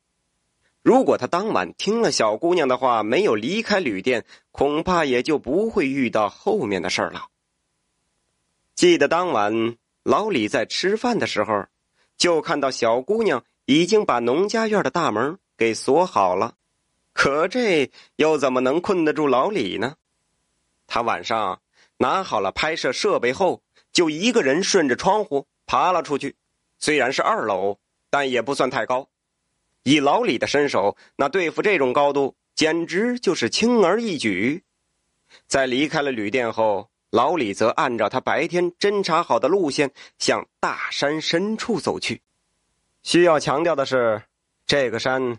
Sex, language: male, Chinese